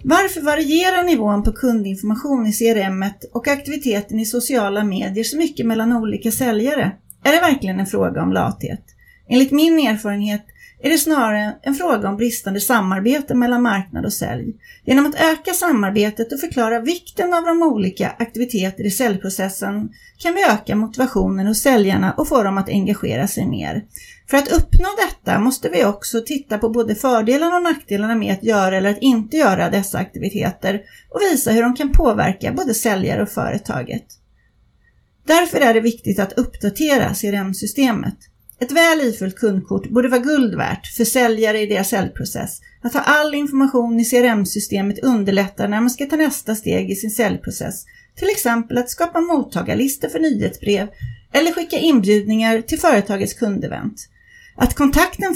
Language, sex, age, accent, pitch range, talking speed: Swedish, female, 30-49, native, 205-300 Hz, 160 wpm